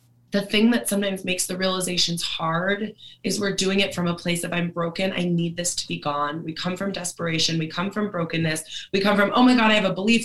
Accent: American